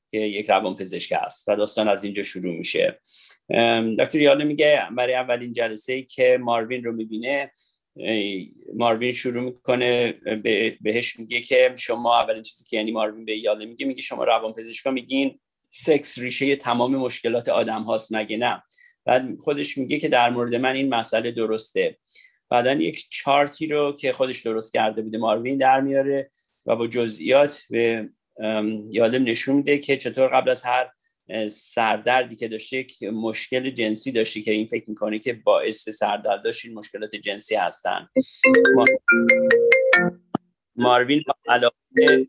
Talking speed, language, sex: 150 wpm, Persian, male